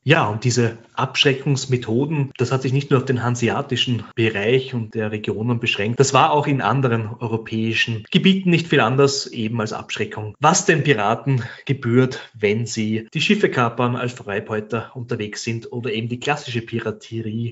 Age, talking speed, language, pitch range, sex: 30-49, 165 wpm, German, 115-145 Hz, male